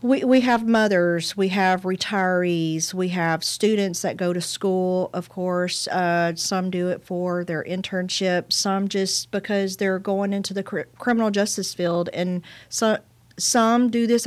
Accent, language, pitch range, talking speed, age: American, English, 170-200 Hz, 160 wpm, 40-59